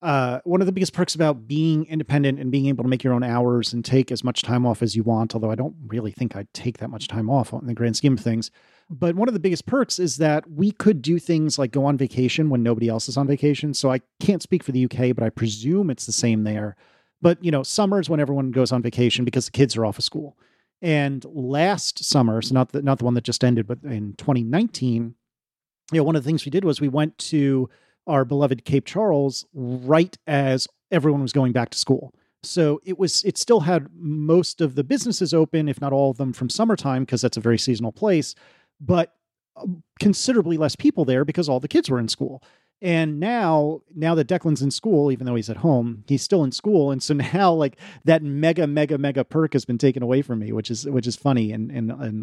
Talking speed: 240 wpm